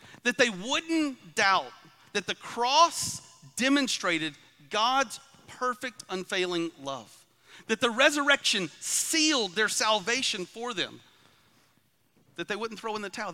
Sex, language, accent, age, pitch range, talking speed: male, English, American, 40-59, 150-205 Hz, 120 wpm